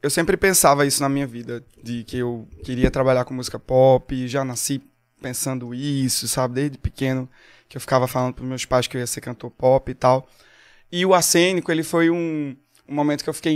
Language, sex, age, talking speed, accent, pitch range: Portuguese, male, 20-39, 210 wpm, Brazilian, 130-155 Hz